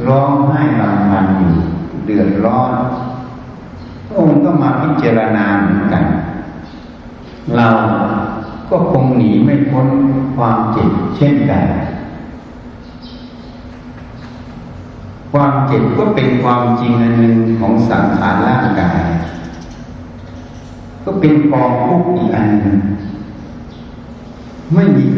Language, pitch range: Thai, 95-130 Hz